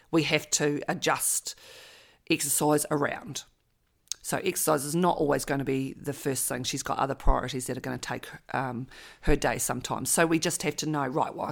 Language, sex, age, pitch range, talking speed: English, female, 40-59, 140-165 Hz, 200 wpm